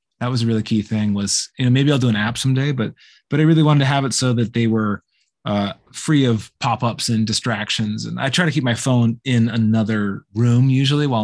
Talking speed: 240 wpm